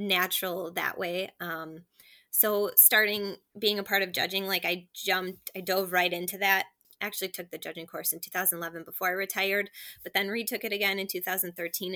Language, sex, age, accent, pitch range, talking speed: English, female, 20-39, American, 180-200 Hz, 180 wpm